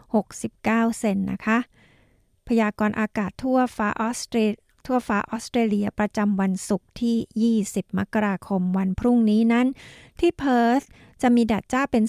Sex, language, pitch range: female, Thai, 200-240 Hz